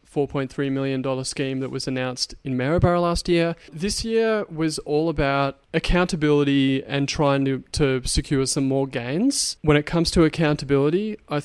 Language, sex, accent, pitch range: English, male, Australian, 130-150 Hz